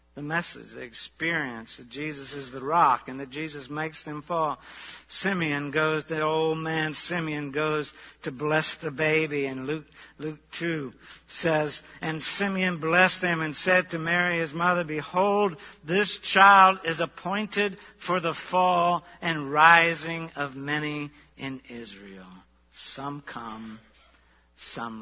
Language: English